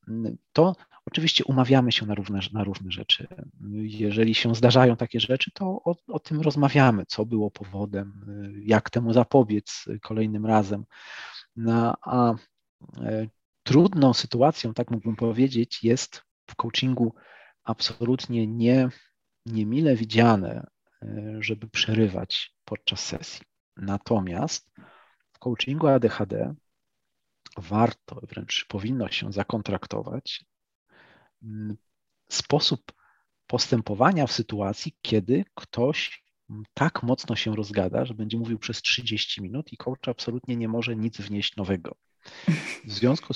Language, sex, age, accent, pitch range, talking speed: Polish, male, 40-59, native, 110-130 Hz, 105 wpm